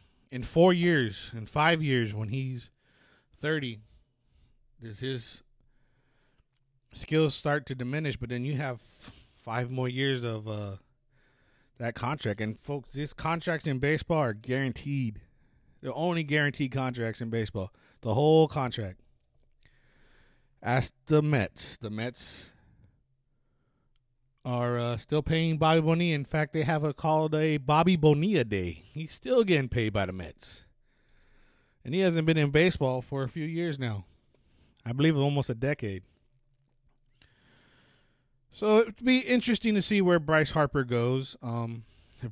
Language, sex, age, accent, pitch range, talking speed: English, male, 30-49, American, 120-150 Hz, 140 wpm